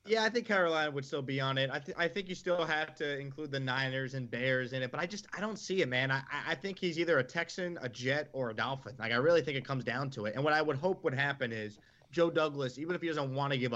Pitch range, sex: 125-150 Hz, male